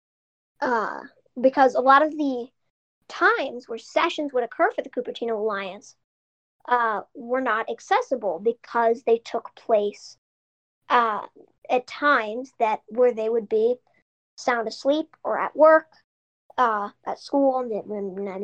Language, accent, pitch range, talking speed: English, American, 235-295 Hz, 135 wpm